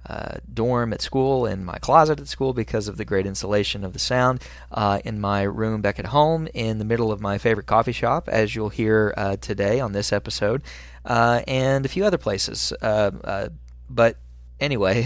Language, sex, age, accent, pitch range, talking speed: English, male, 20-39, American, 105-120 Hz, 200 wpm